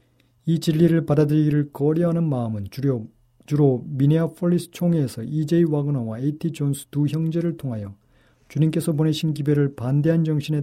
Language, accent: Korean, native